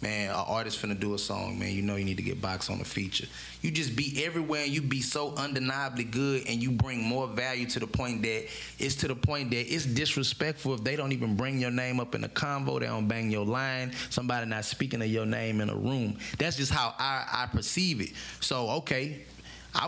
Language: English